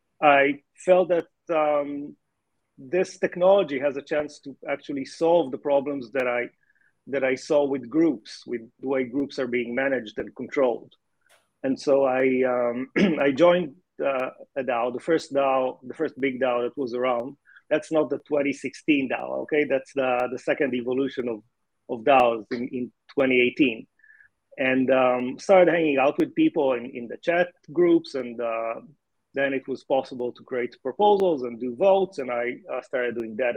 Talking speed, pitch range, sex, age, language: 175 wpm, 130-170 Hz, male, 30-49, English